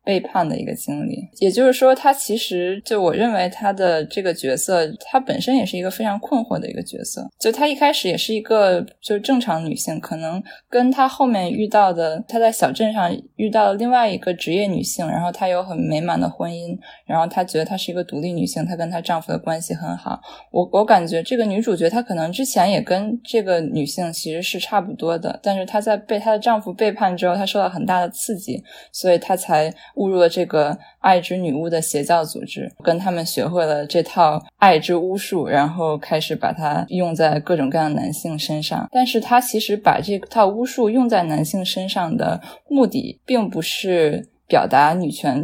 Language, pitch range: Chinese, 165-215 Hz